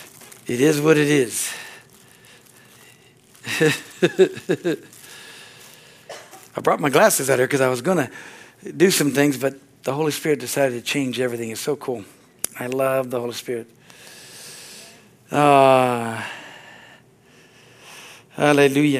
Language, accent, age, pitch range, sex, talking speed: English, American, 60-79, 140-195 Hz, male, 115 wpm